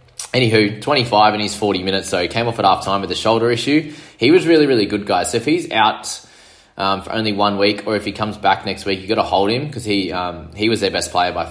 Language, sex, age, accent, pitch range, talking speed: English, male, 20-39, Australian, 85-105 Hz, 270 wpm